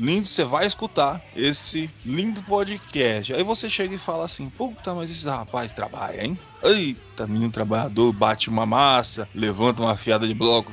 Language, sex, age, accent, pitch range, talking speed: Portuguese, male, 20-39, Brazilian, 120-180 Hz, 170 wpm